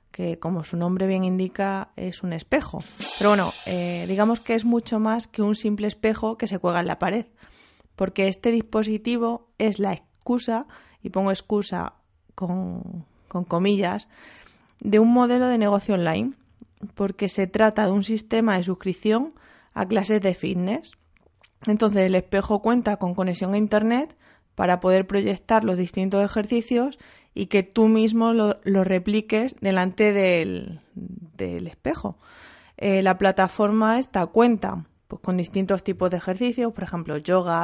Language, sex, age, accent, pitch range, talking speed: Spanish, female, 20-39, Spanish, 180-220 Hz, 150 wpm